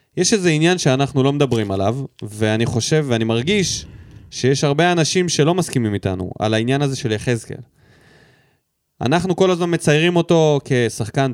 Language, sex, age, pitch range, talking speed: Hebrew, male, 20-39, 120-175 Hz, 150 wpm